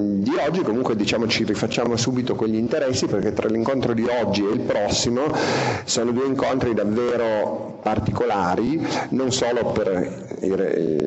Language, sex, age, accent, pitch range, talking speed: Italian, male, 40-59, native, 95-115 Hz, 140 wpm